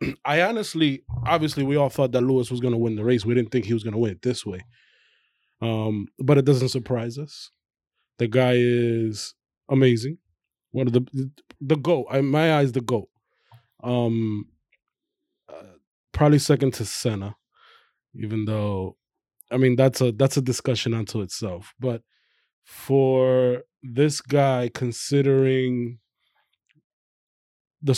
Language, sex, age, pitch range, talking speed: English, male, 20-39, 115-135 Hz, 150 wpm